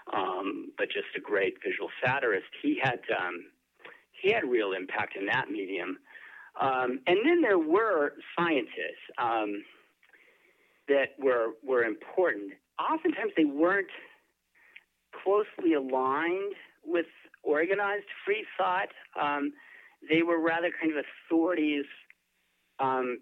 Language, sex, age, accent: English, male, 50-69, American